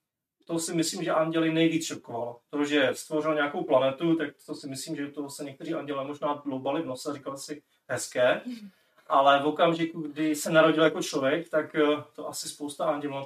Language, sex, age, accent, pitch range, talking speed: Czech, male, 30-49, native, 150-185 Hz, 200 wpm